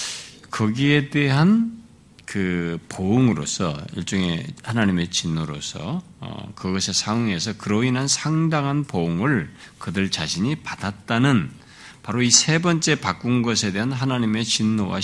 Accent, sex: native, male